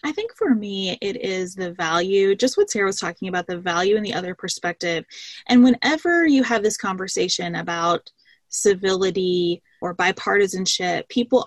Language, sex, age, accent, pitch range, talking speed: English, female, 20-39, American, 185-245 Hz, 160 wpm